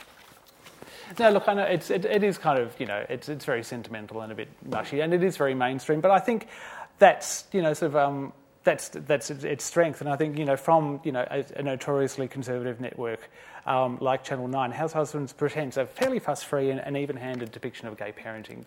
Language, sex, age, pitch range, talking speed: English, male, 30-49, 120-155 Hz, 215 wpm